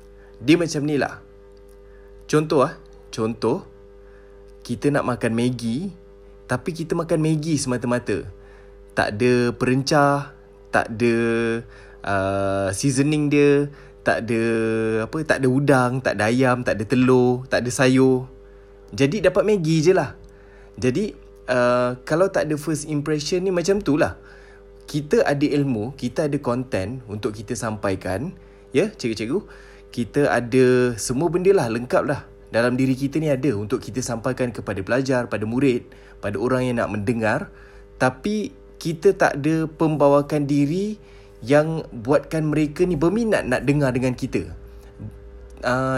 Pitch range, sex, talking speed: 100-145 Hz, male, 135 wpm